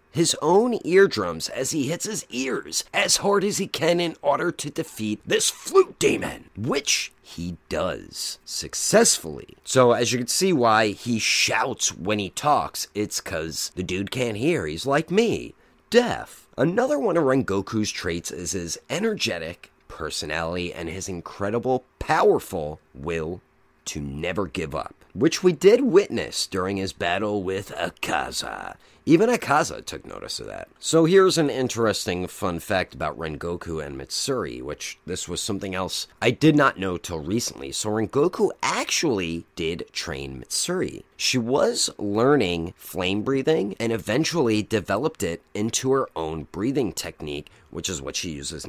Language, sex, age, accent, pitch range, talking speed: English, male, 30-49, American, 85-140 Hz, 155 wpm